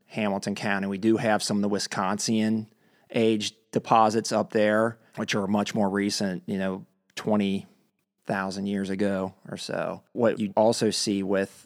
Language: English